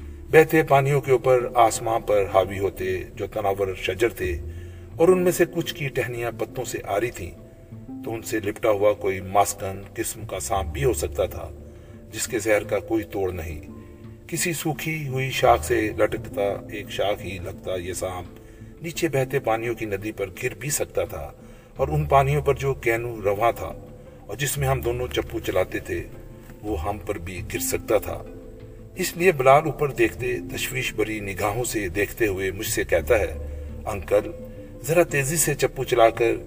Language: Urdu